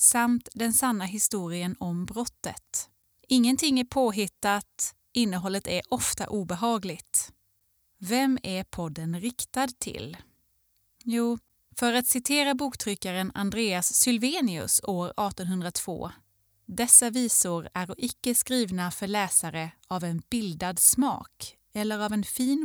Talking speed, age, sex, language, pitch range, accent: 115 wpm, 20-39, female, Swedish, 175-240 Hz, native